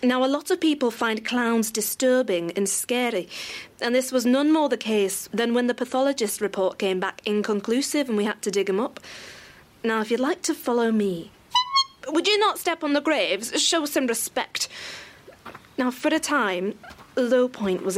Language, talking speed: Danish, 185 wpm